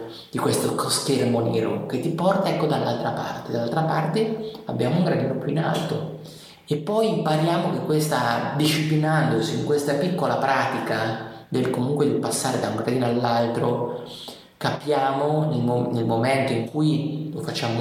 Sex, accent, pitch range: male, native, 115-155 Hz